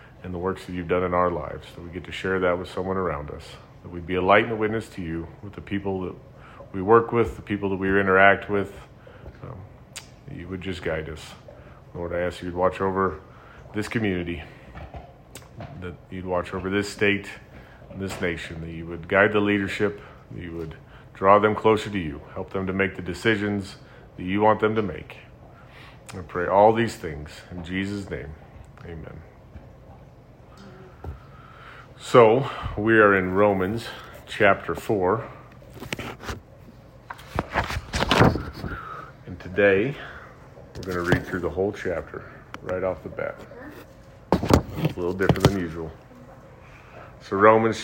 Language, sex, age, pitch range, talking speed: English, male, 40-59, 95-125 Hz, 165 wpm